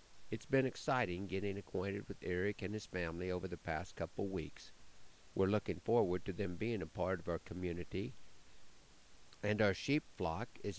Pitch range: 90-110 Hz